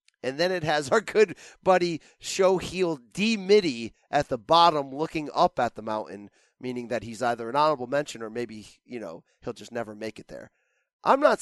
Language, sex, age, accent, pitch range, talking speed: English, male, 30-49, American, 120-160 Hz, 190 wpm